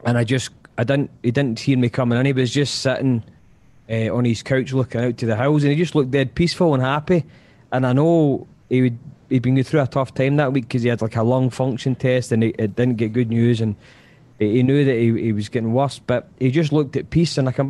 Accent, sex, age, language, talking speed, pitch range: British, male, 20-39, English, 265 wpm, 115-140 Hz